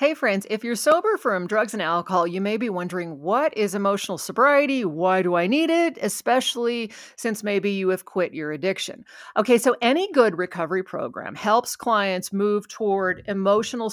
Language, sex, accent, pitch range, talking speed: English, female, American, 175-230 Hz, 175 wpm